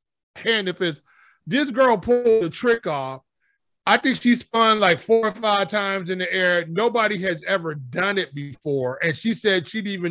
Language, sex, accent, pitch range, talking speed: English, male, American, 165-210 Hz, 195 wpm